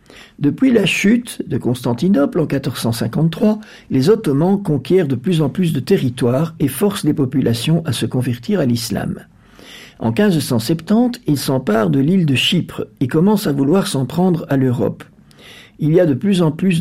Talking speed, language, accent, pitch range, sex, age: 170 wpm, French, French, 130-185 Hz, male, 60-79